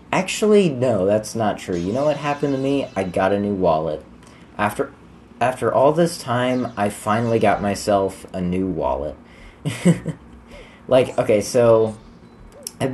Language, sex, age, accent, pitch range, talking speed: English, male, 30-49, American, 95-130 Hz, 150 wpm